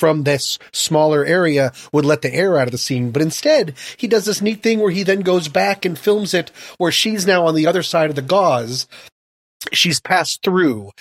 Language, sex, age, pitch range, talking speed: English, male, 30-49, 140-185 Hz, 225 wpm